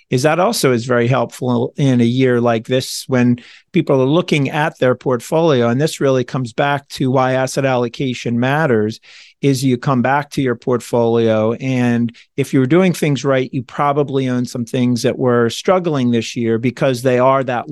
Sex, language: male, English